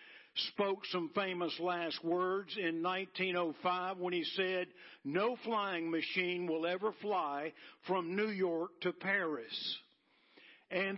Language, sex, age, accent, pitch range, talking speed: English, male, 50-69, American, 180-225 Hz, 120 wpm